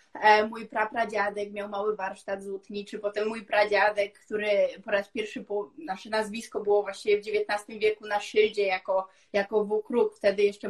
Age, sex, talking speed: 20-39, female, 165 wpm